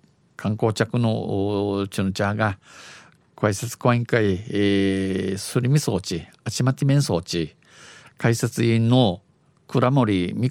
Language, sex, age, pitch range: Japanese, male, 50-69, 100-125 Hz